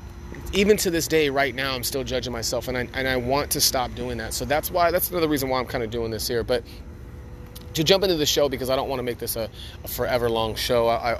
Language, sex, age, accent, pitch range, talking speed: English, male, 30-49, American, 115-135 Hz, 275 wpm